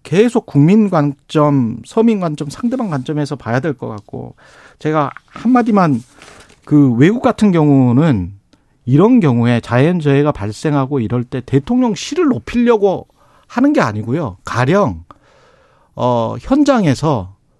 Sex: male